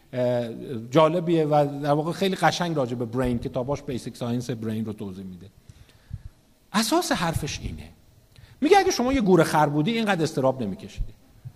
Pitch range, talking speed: 125-205 Hz, 140 wpm